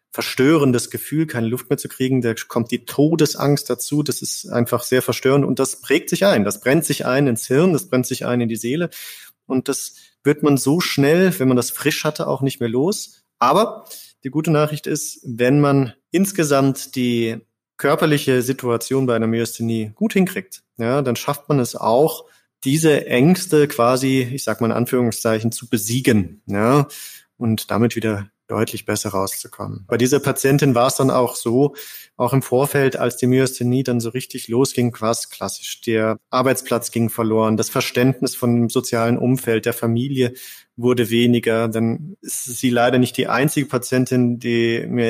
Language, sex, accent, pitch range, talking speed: German, male, German, 115-135 Hz, 175 wpm